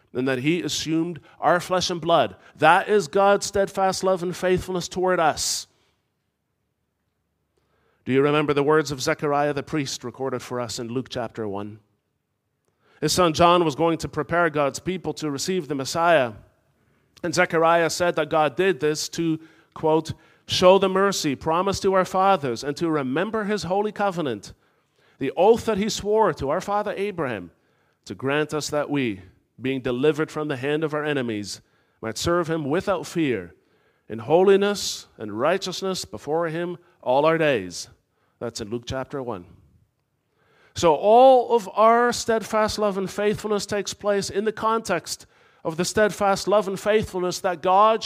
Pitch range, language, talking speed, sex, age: 145-200 Hz, English, 160 wpm, male, 40-59